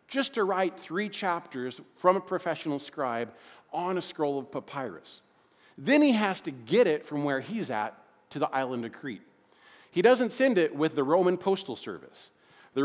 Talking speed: 180 wpm